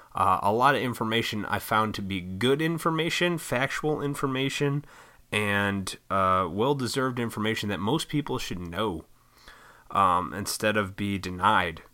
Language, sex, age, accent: English, male, 30-49, American